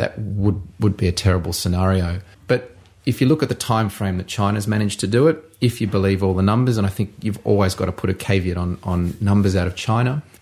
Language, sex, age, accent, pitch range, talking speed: English, male, 30-49, Australian, 95-105 Hz, 250 wpm